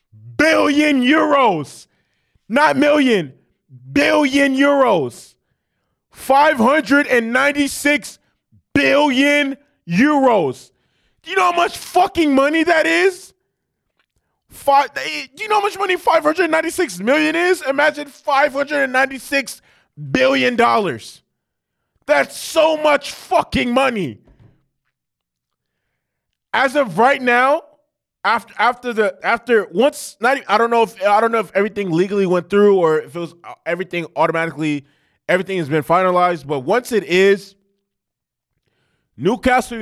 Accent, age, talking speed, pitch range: American, 20-39, 130 wpm, 180-280 Hz